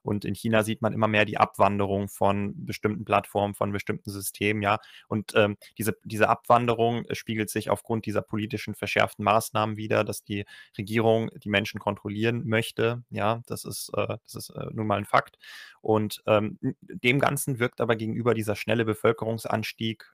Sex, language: male, German